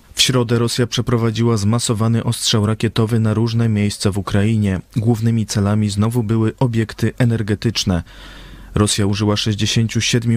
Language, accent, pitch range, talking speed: Polish, native, 105-120 Hz, 120 wpm